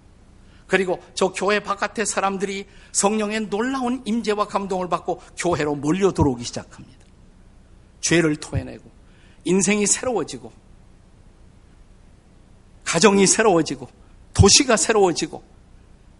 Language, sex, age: Korean, male, 50-69